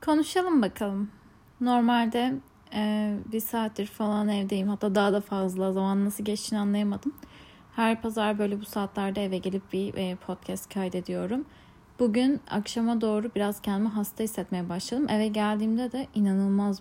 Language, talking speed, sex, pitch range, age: Turkish, 140 wpm, female, 190-220 Hz, 10-29